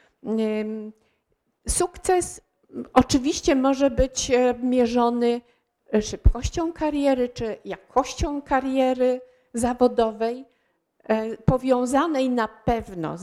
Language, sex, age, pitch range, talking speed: Polish, female, 50-69, 210-255 Hz, 65 wpm